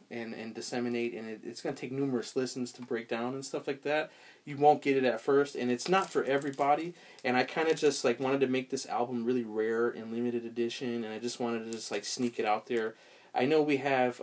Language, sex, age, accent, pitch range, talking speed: English, male, 30-49, American, 115-135 Hz, 255 wpm